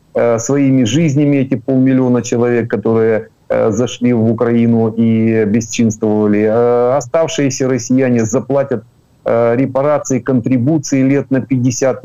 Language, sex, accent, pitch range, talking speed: Ukrainian, male, native, 115-130 Hz, 105 wpm